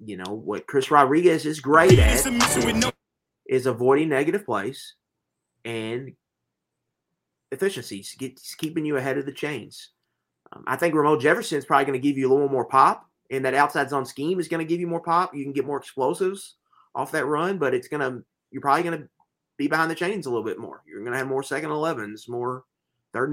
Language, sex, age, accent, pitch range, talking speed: English, male, 30-49, American, 120-155 Hz, 205 wpm